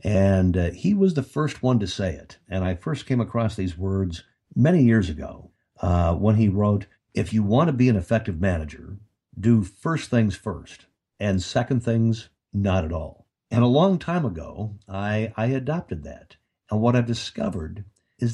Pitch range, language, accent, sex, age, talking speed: 90-120 Hz, English, American, male, 60-79, 185 wpm